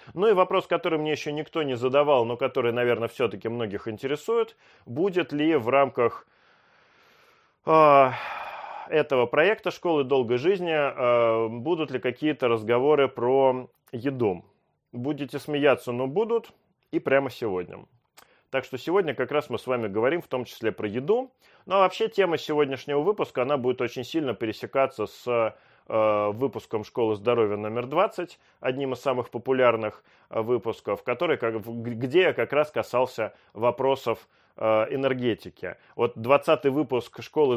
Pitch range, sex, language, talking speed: 115-145 Hz, male, Russian, 140 wpm